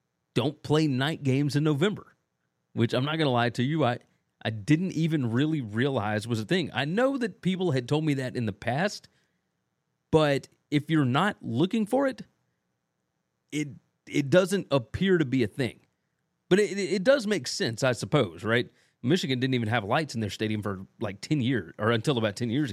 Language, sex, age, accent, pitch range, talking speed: English, male, 30-49, American, 115-150 Hz, 200 wpm